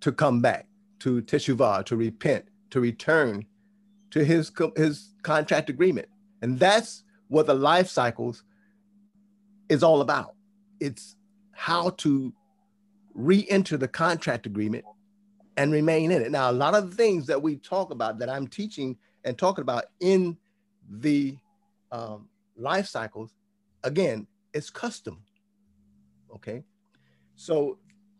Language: English